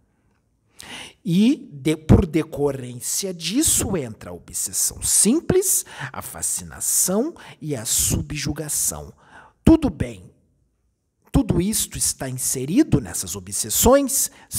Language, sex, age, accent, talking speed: Portuguese, male, 50-69, Brazilian, 85 wpm